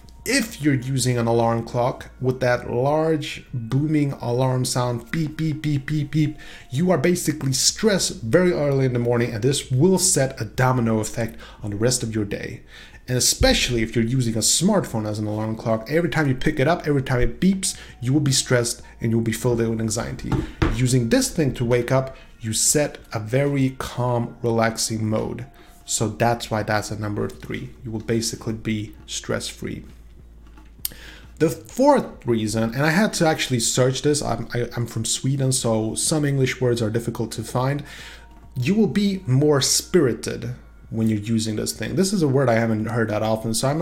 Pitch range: 115-145 Hz